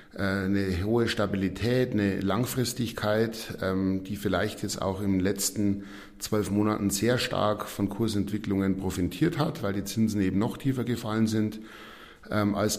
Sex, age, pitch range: male, 50-69, 95-110 Hz